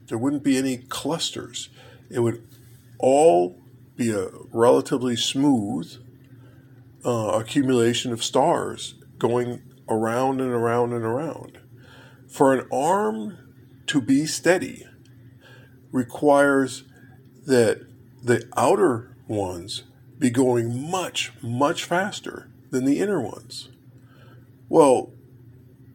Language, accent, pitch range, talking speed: English, American, 120-130 Hz, 100 wpm